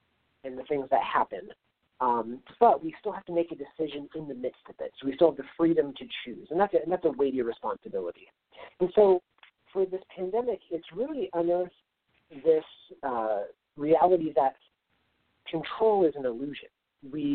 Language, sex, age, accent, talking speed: English, male, 40-59, American, 170 wpm